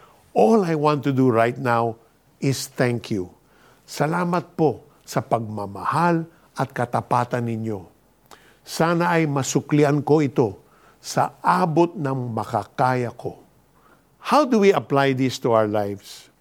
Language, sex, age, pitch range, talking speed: Filipino, male, 50-69, 130-170 Hz, 130 wpm